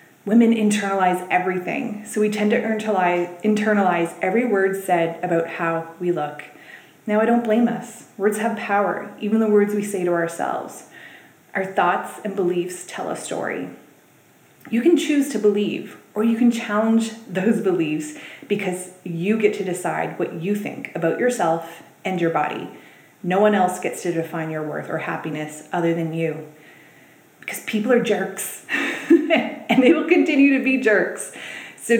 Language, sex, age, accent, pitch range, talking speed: English, female, 30-49, American, 175-240 Hz, 160 wpm